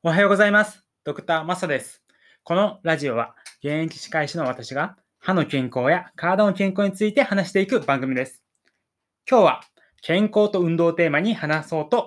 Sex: male